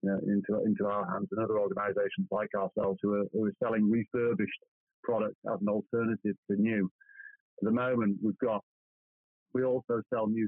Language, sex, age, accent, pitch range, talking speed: English, male, 30-49, British, 105-130 Hz, 185 wpm